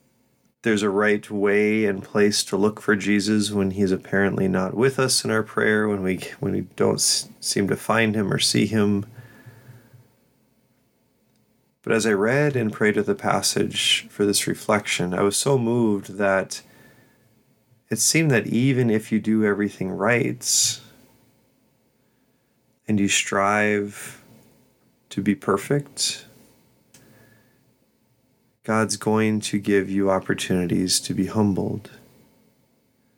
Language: English